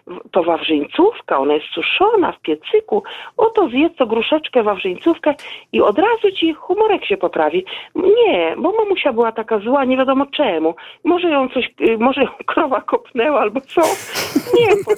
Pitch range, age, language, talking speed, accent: 220-340 Hz, 50-69, Polish, 155 wpm, native